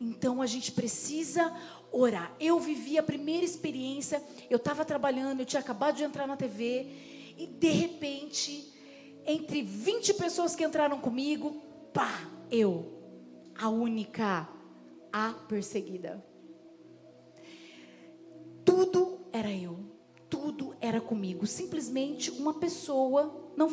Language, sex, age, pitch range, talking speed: Portuguese, female, 30-49, 255-350 Hz, 115 wpm